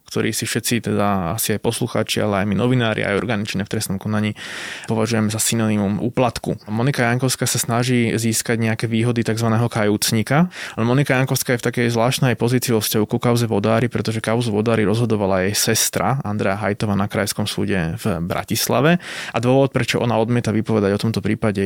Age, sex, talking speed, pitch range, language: 20-39, male, 175 wpm, 105-125 Hz, Slovak